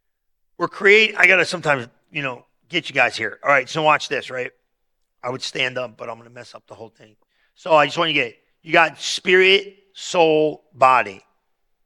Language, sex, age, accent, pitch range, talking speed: English, male, 50-69, American, 145-190 Hz, 220 wpm